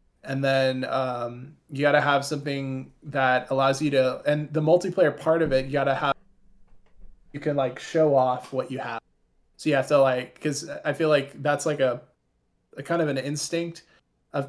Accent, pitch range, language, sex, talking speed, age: American, 130-145 Hz, English, male, 190 wpm, 20-39